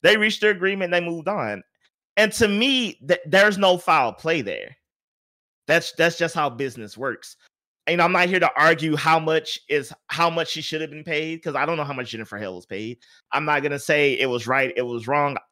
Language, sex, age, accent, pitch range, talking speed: English, male, 30-49, American, 145-195 Hz, 230 wpm